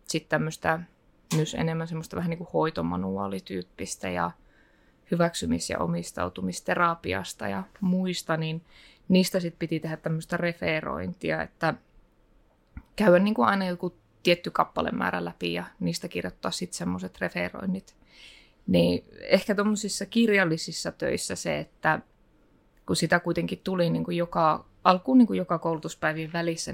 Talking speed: 115 wpm